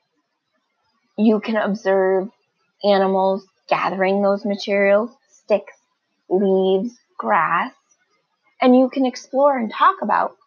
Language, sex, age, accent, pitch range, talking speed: English, female, 20-39, American, 195-250 Hz, 95 wpm